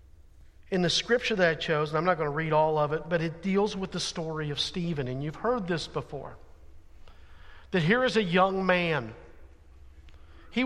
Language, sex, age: English, male, 50-69